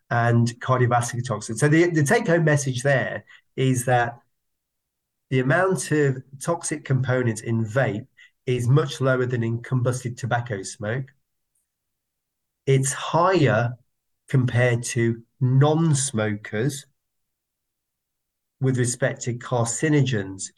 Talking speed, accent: 100 wpm, British